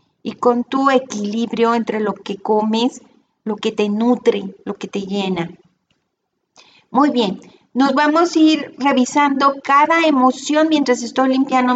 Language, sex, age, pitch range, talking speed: Spanish, female, 40-59, 230-285 Hz, 145 wpm